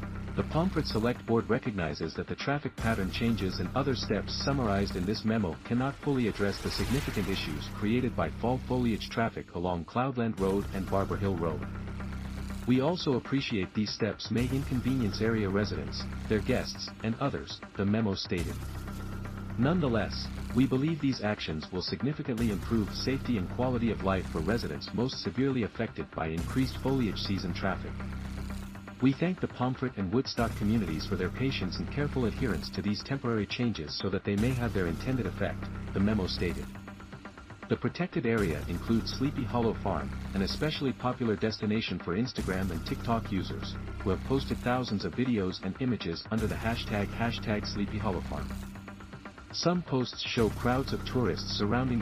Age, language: 50-69, English